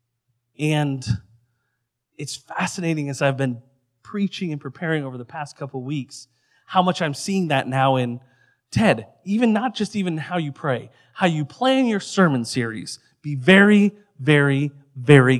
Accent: American